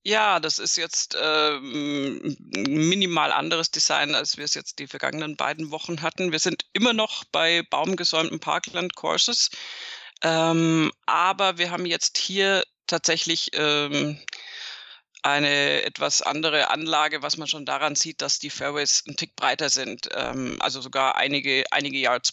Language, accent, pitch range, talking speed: German, German, 145-165 Hz, 150 wpm